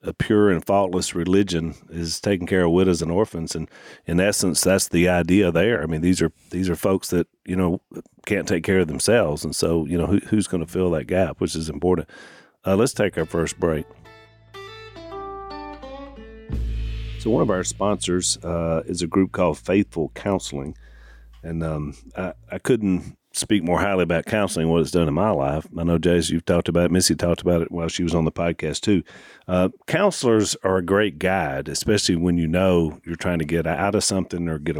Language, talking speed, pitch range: English, 205 wpm, 80-100 Hz